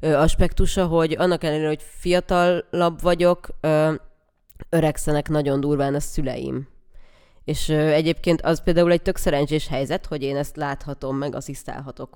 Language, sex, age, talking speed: Hungarian, female, 20-39, 130 wpm